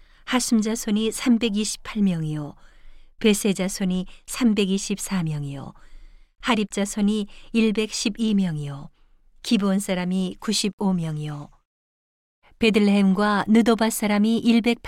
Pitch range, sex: 185-220 Hz, female